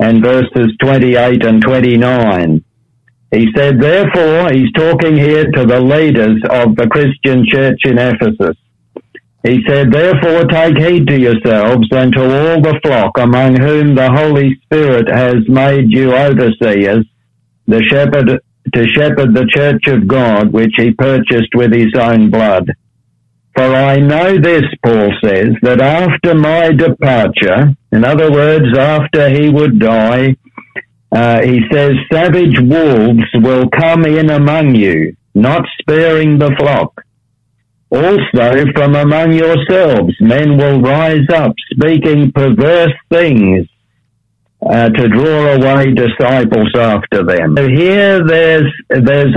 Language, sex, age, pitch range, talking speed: English, male, 60-79, 120-150 Hz, 130 wpm